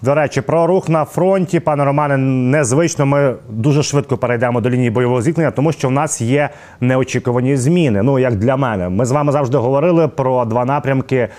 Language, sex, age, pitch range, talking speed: Ukrainian, male, 30-49, 120-145 Hz, 190 wpm